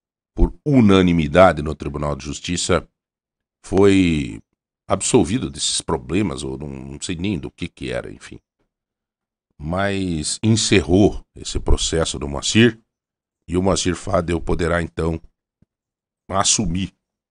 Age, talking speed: 60-79, 110 wpm